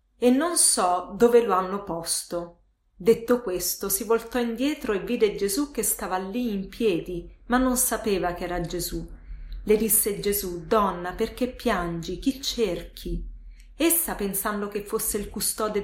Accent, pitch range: native, 175-230 Hz